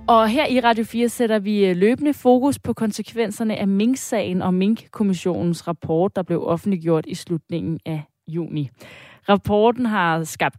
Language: Danish